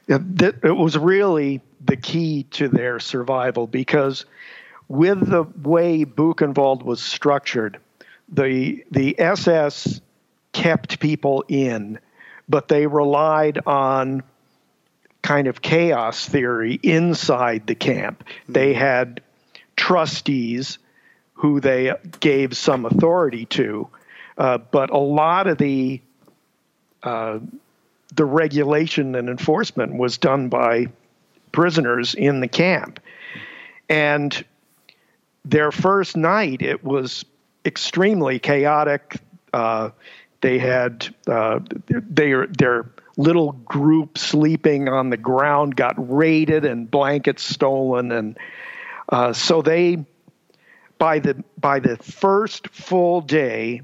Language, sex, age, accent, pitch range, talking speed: English, male, 50-69, American, 130-160 Hz, 105 wpm